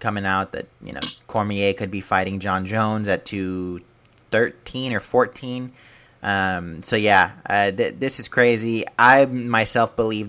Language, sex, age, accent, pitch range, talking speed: English, male, 30-49, American, 95-115 Hz, 150 wpm